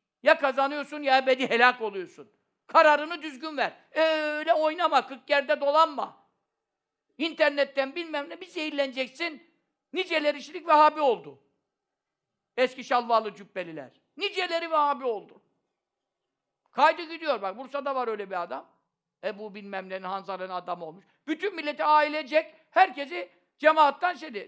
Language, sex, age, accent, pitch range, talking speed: Turkish, male, 60-79, native, 225-310 Hz, 125 wpm